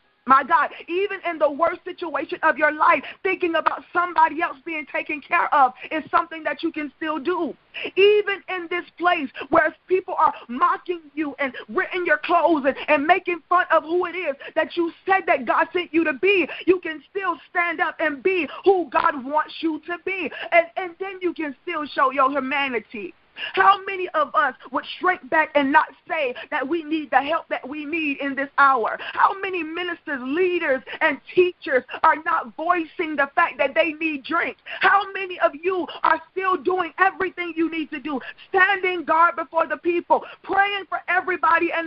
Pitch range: 305-360 Hz